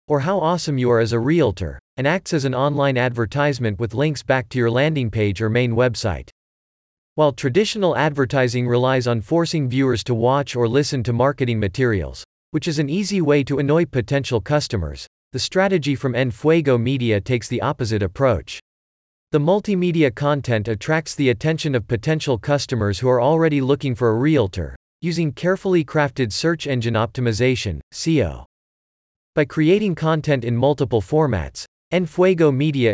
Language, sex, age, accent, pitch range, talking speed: English, male, 40-59, American, 115-150 Hz, 160 wpm